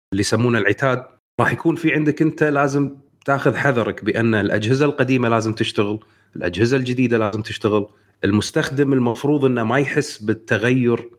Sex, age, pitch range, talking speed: male, 30-49, 110-135 Hz, 140 wpm